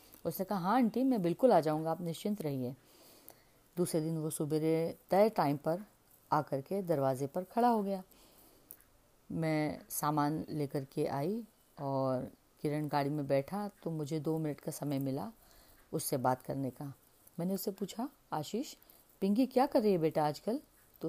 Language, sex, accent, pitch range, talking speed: Hindi, female, native, 145-190 Hz, 165 wpm